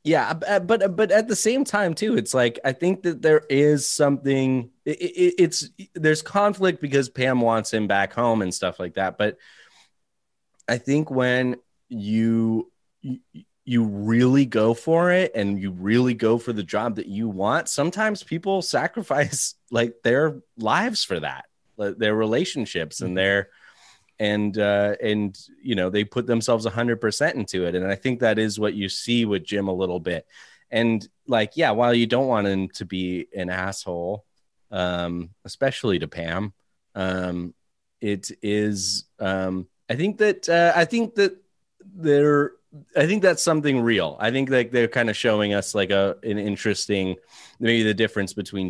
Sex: male